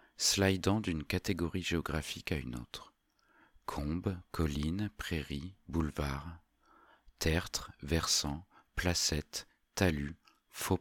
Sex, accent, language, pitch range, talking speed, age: male, French, French, 70-85 Hz, 90 wpm, 40-59